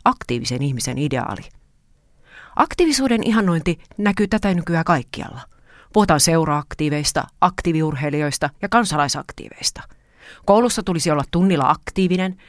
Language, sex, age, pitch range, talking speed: Finnish, female, 30-49, 150-205 Hz, 90 wpm